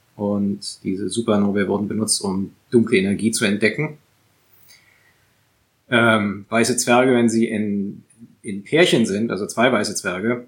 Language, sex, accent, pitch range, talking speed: German, male, German, 105-120 Hz, 130 wpm